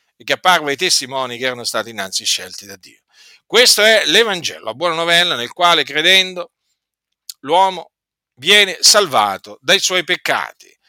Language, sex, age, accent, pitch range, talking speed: Italian, male, 50-69, native, 135-200 Hz, 145 wpm